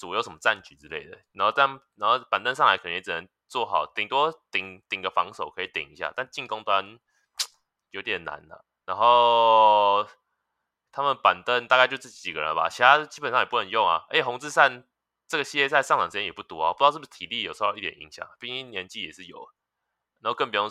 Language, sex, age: Chinese, male, 20-39